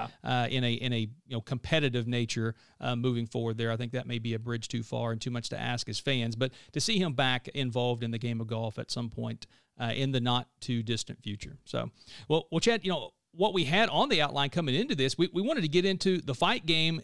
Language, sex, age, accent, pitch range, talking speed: English, male, 40-59, American, 125-155 Hz, 255 wpm